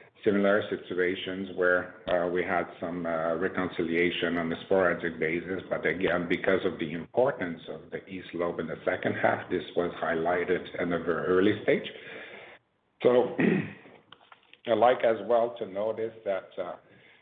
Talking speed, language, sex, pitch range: 155 wpm, English, male, 85-95 Hz